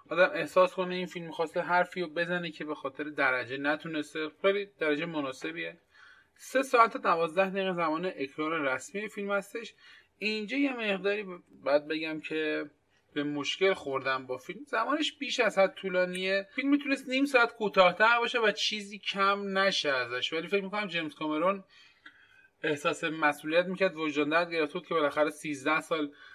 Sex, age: male, 30-49